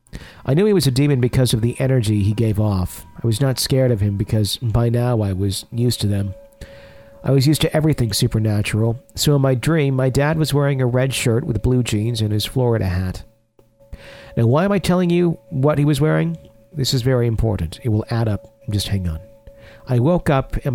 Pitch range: 105-130 Hz